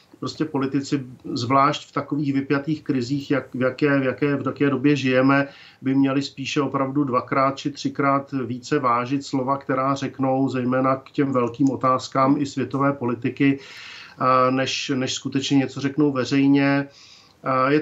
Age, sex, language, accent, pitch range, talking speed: 50-69, male, Czech, native, 130-150 Hz, 145 wpm